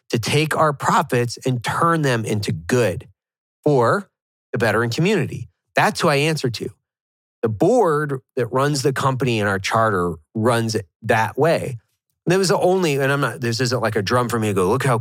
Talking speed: 195 wpm